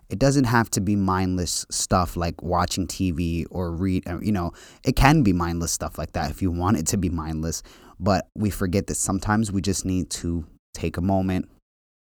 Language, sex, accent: English, male, American